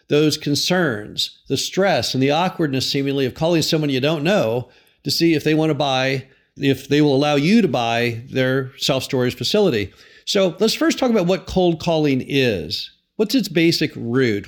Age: 50-69